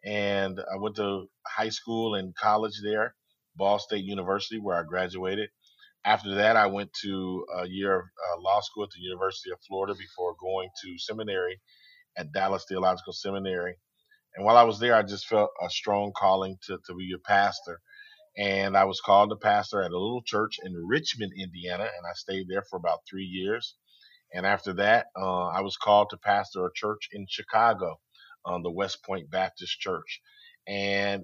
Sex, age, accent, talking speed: male, 40-59, American, 180 wpm